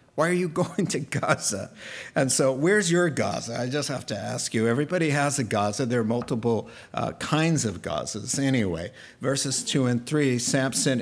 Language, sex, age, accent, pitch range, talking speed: English, male, 50-69, American, 135-195 Hz, 185 wpm